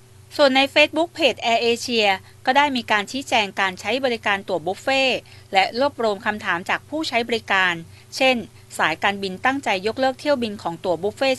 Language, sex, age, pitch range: Thai, female, 30-49, 190-255 Hz